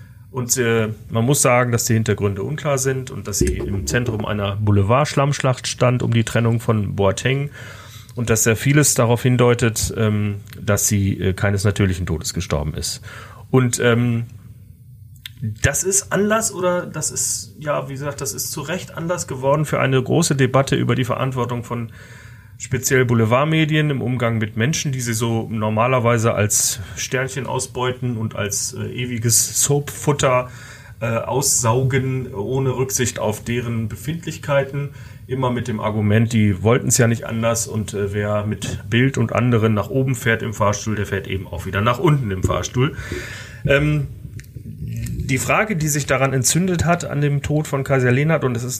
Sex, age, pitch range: male, 30-49, 110-135 Hz